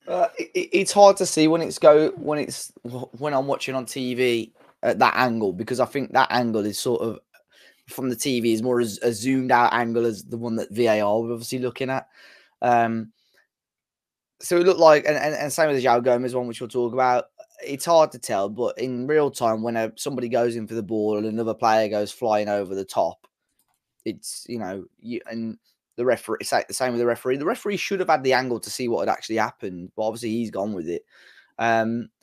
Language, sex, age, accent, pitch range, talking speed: English, male, 20-39, British, 110-130 Hz, 225 wpm